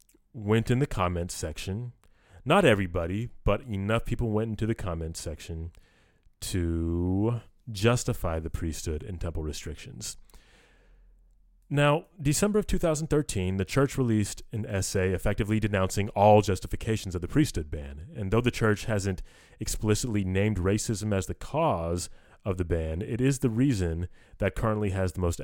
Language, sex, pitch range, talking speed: English, male, 85-110 Hz, 145 wpm